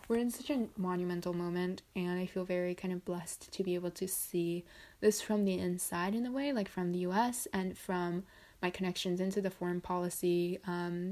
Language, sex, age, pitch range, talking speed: English, female, 20-39, 180-215 Hz, 205 wpm